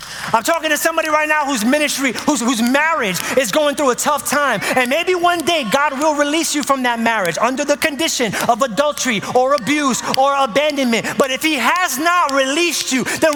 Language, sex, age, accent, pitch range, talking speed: English, male, 30-49, American, 245-350 Hz, 200 wpm